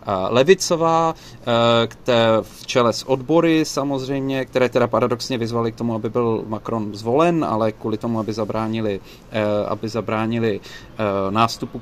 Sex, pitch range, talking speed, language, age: male, 120-140 Hz, 120 wpm, Czech, 30-49